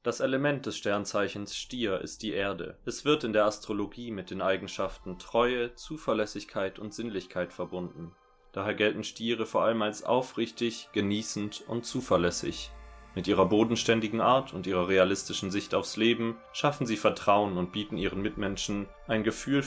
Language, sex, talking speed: German, male, 155 wpm